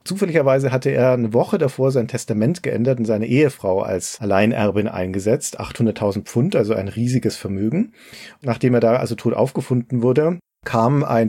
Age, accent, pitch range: 40-59, German, 110-130 Hz